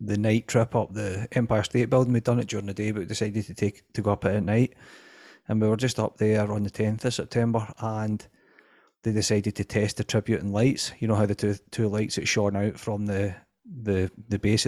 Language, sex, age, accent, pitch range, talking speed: English, male, 30-49, British, 105-115 Hz, 240 wpm